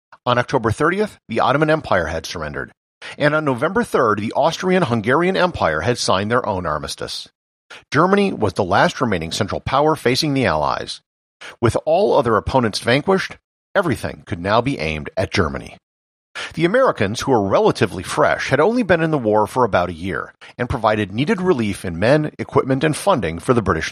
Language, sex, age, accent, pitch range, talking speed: English, male, 50-69, American, 95-155 Hz, 175 wpm